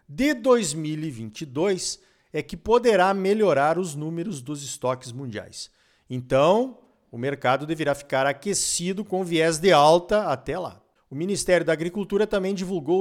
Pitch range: 145-195 Hz